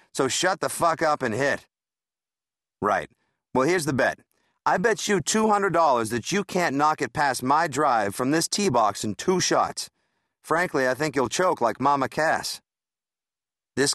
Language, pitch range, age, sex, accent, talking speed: English, 125-165 Hz, 50-69, male, American, 170 wpm